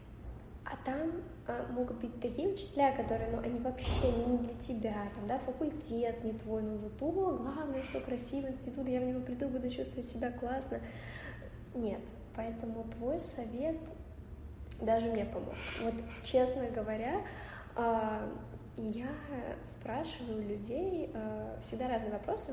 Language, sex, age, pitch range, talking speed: Russian, female, 10-29, 220-260 Hz, 135 wpm